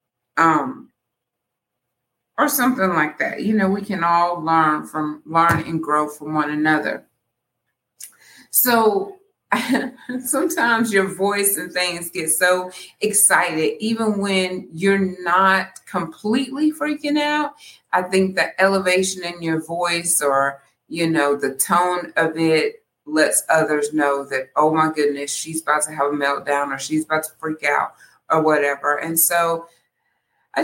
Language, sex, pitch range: English, female, 155-195 Hz